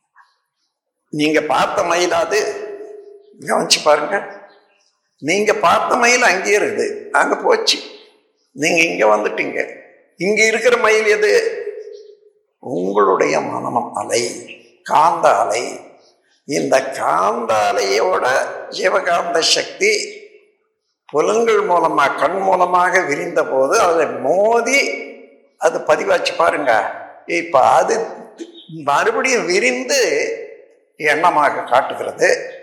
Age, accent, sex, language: 60-79, native, male, Tamil